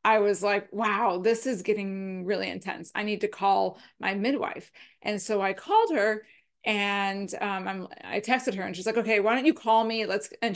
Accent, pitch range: American, 205-260 Hz